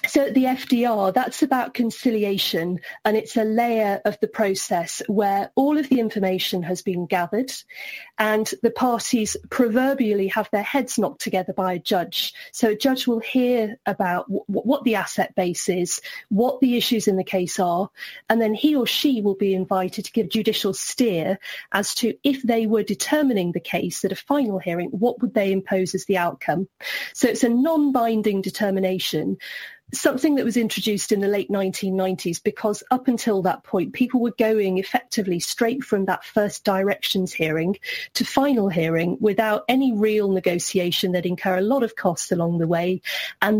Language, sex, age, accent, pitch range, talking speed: English, female, 30-49, British, 190-235 Hz, 175 wpm